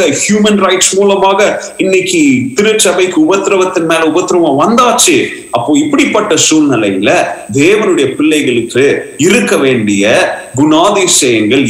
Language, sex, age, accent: Tamil, male, 30-49, native